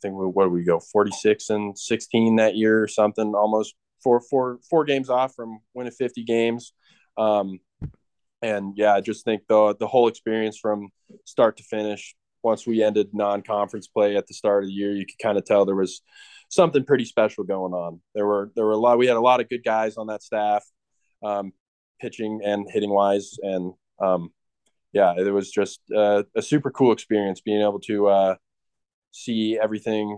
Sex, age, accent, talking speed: male, 20-39, American, 195 wpm